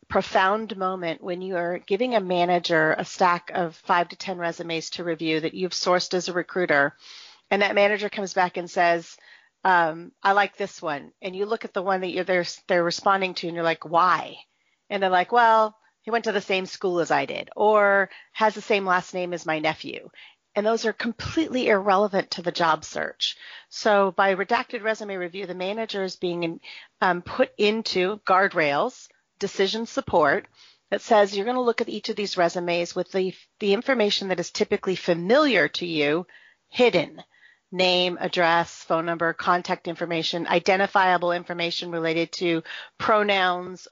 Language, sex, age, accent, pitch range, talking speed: English, female, 40-59, American, 175-205 Hz, 180 wpm